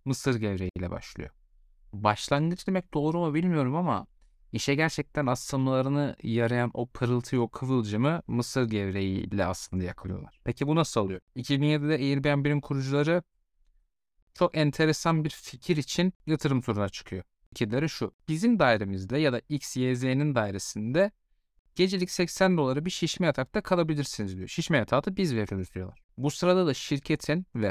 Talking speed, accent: 140 wpm, native